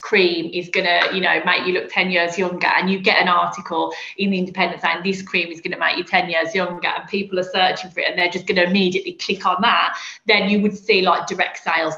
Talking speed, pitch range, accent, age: 250 wpm, 180-220 Hz, British, 20-39